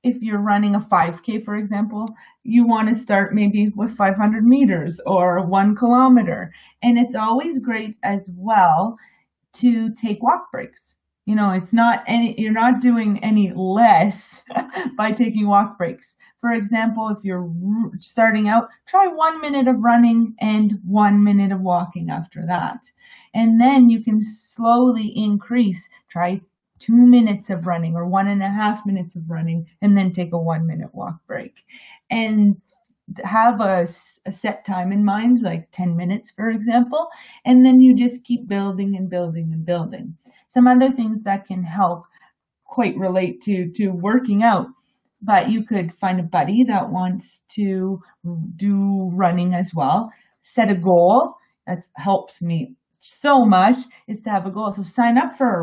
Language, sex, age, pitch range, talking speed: English, female, 30-49, 190-235 Hz, 165 wpm